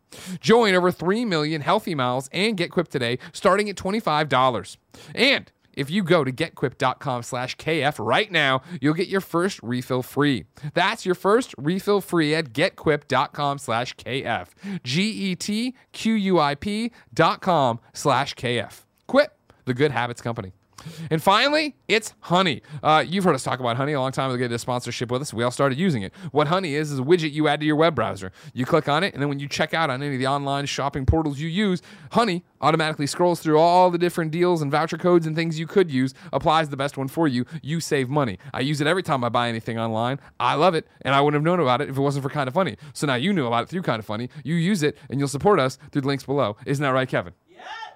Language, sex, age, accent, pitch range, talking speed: English, male, 30-49, American, 130-175 Hz, 235 wpm